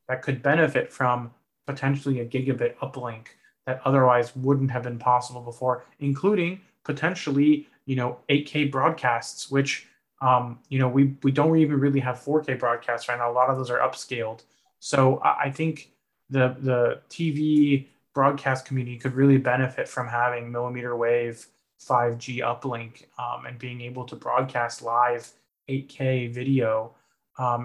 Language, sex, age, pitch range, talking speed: English, male, 20-39, 125-140 Hz, 150 wpm